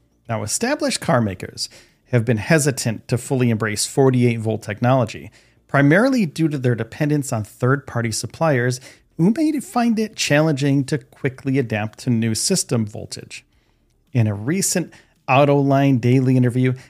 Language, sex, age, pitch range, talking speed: English, male, 40-59, 115-155 Hz, 140 wpm